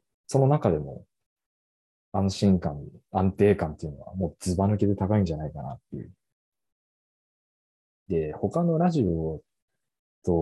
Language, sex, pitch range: Japanese, male, 80-115 Hz